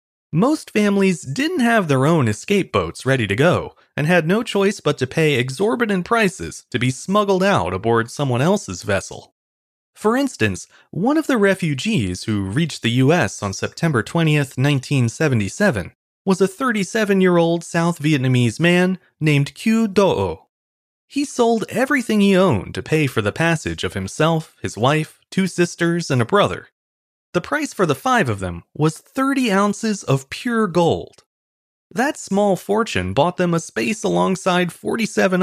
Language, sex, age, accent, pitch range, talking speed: English, male, 30-49, American, 120-200 Hz, 155 wpm